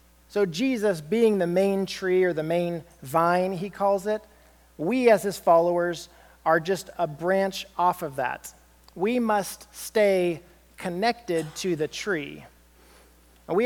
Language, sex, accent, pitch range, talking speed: English, male, American, 160-205 Hz, 140 wpm